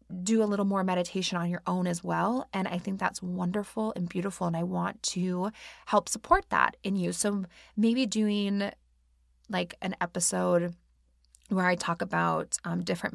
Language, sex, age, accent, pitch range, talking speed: English, female, 20-39, American, 175-210 Hz, 175 wpm